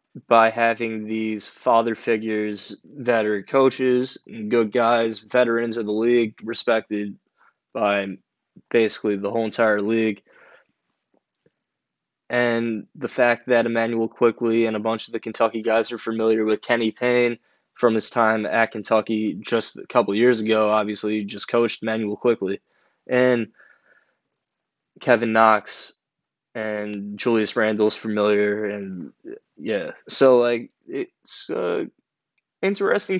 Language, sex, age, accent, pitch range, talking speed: English, male, 20-39, American, 105-125 Hz, 125 wpm